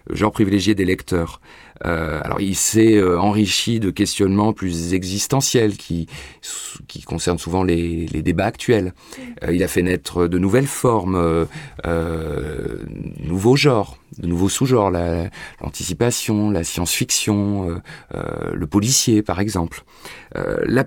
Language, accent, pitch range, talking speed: French, French, 90-115 Hz, 145 wpm